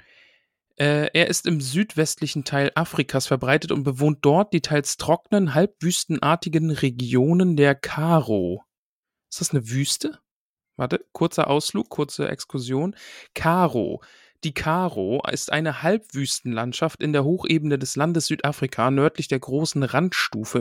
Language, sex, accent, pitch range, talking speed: German, male, German, 135-170 Hz, 120 wpm